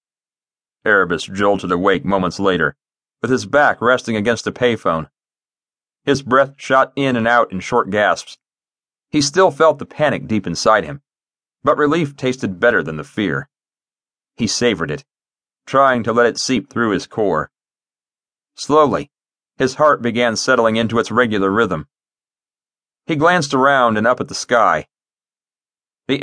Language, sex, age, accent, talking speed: English, male, 40-59, American, 150 wpm